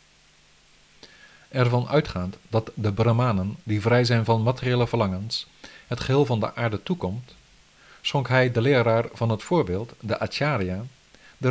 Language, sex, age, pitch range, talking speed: Dutch, male, 50-69, 95-125 Hz, 140 wpm